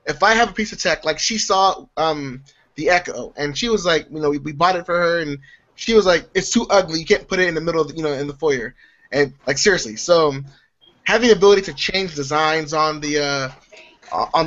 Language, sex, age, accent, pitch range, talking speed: English, male, 20-39, American, 150-200 Hz, 250 wpm